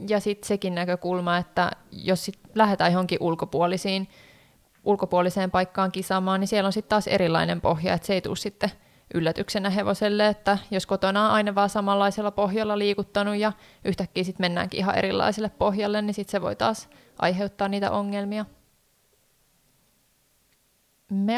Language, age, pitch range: Finnish, 20-39, 185-210 Hz